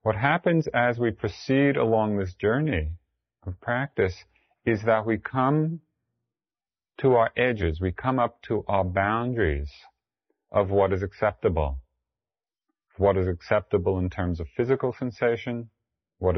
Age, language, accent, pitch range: 40-59, English, American, 90-120 Hz